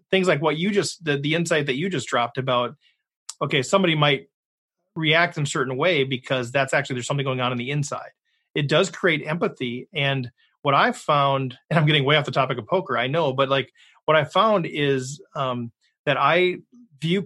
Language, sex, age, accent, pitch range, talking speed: English, male, 30-49, American, 130-165 Hz, 210 wpm